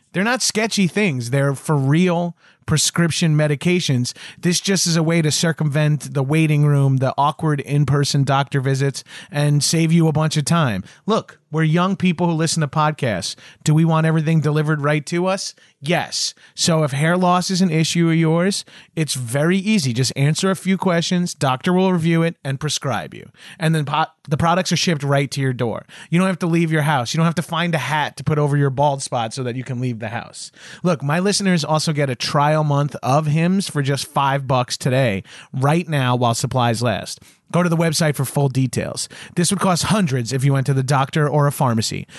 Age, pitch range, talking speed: 30-49, 135-170 Hz, 215 wpm